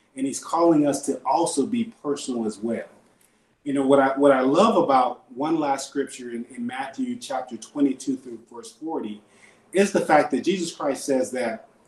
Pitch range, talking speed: 120-170 Hz, 185 wpm